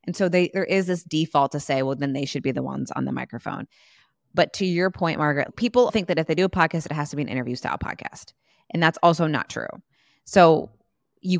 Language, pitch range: English, 145-180 Hz